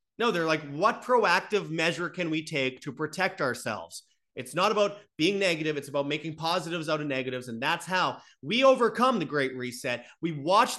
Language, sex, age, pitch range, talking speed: English, male, 30-49, 135-190 Hz, 190 wpm